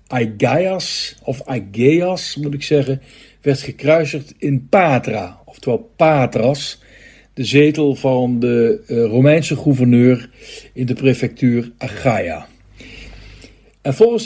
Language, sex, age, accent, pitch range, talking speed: Dutch, male, 60-79, Dutch, 130-165 Hz, 105 wpm